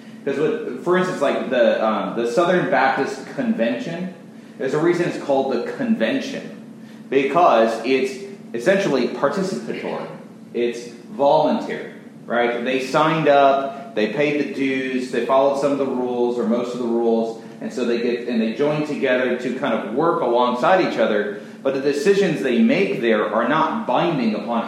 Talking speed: 165 wpm